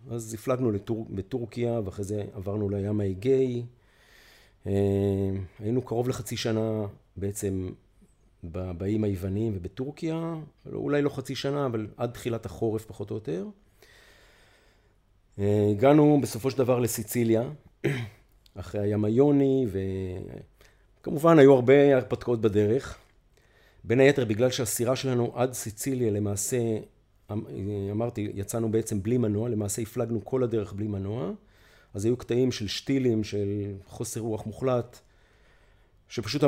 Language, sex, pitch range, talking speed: Hebrew, male, 100-125 Hz, 115 wpm